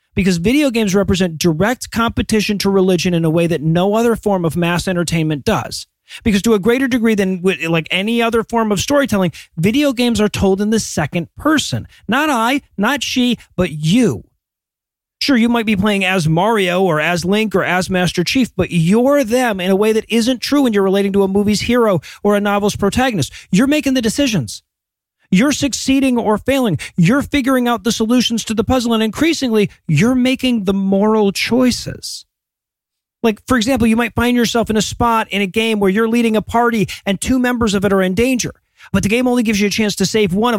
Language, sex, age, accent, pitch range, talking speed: English, male, 40-59, American, 190-235 Hz, 210 wpm